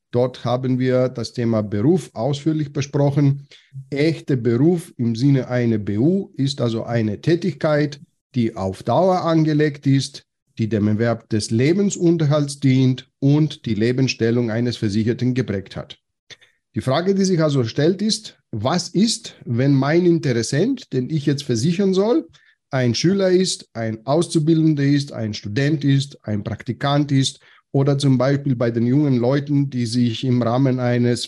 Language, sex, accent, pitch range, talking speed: German, male, German, 120-150 Hz, 150 wpm